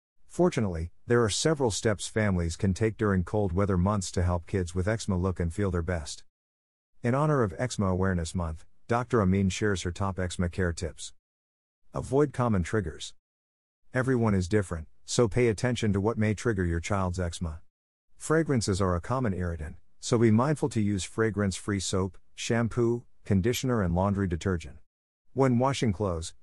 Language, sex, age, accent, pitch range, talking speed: English, male, 50-69, American, 85-115 Hz, 165 wpm